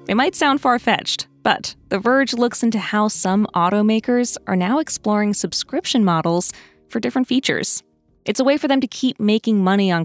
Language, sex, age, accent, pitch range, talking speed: English, female, 20-39, American, 170-235 Hz, 180 wpm